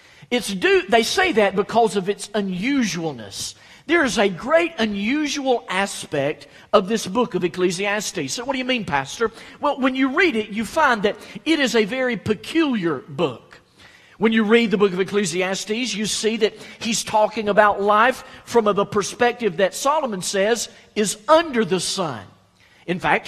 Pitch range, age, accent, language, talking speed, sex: 195-255 Hz, 50-69, American, English, 170 wpm, male